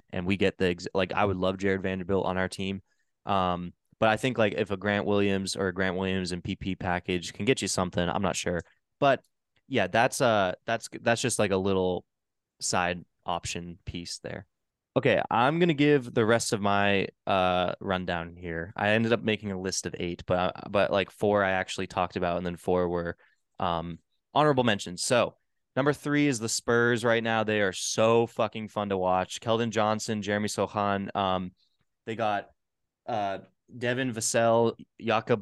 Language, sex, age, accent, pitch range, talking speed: English, male, 20-39, American, 95-115 Hz, 190 wpm